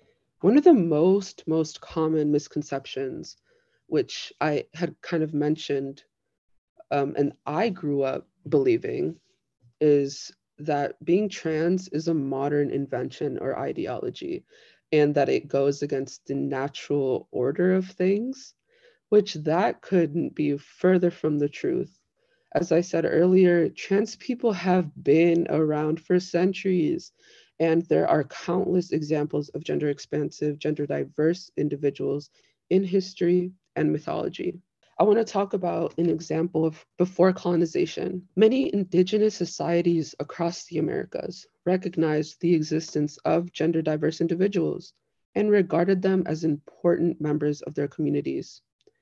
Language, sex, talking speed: English, female, 125 wpm